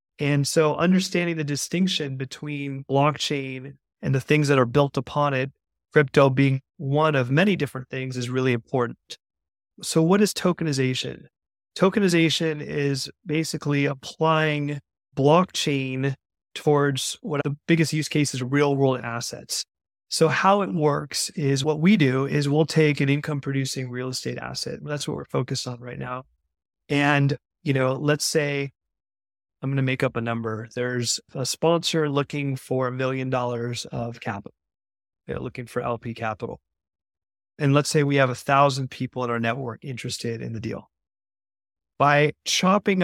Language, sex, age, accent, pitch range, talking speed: English, male, 30-49, American, 130-155 Hz, 155 wpm